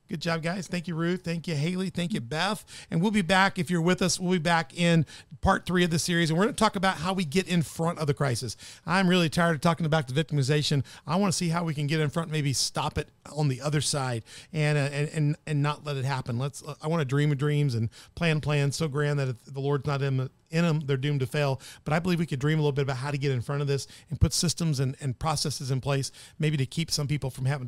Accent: American